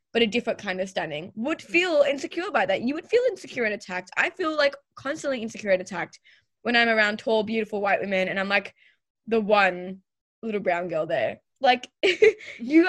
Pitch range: 205-280 Hz